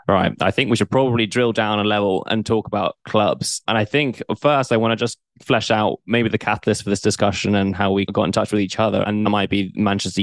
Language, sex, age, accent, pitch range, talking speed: English, male, 10-29, British, 100-110 Hz, 250 wpm